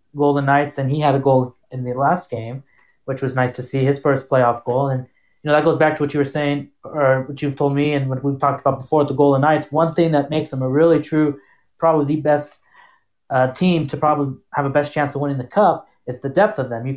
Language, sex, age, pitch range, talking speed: English, male, 20-39, 135-155 Hz, 265 wpm